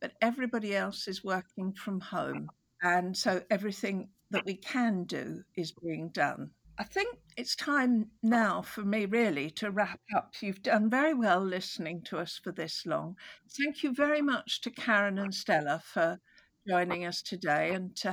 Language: English